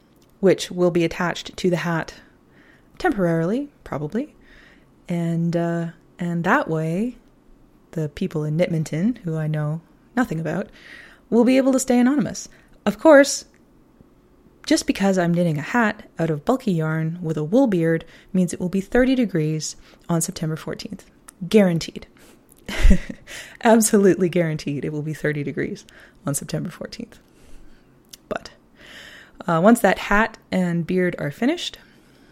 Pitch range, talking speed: 165-210 Hz, 135 wpm